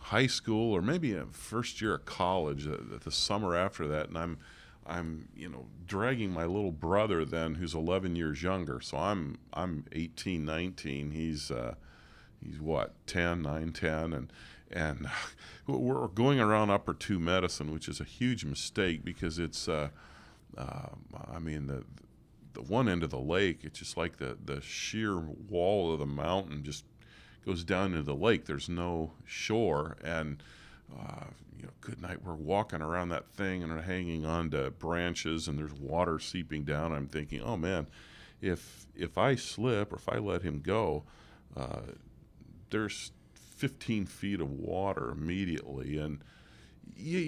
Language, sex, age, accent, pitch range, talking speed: English, male, 40-59, American, 75-95 Hz, 165 wpm